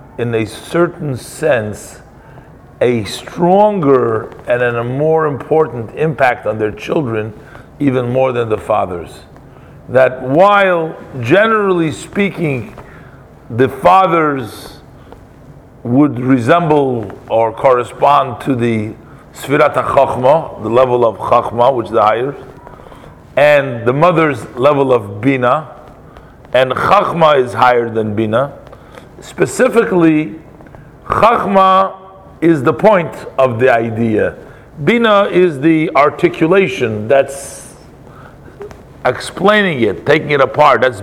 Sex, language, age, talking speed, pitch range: male, English, 50-69, 105 wpm, 125-165 Hz